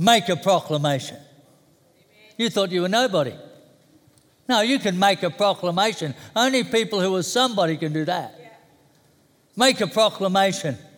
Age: 60-79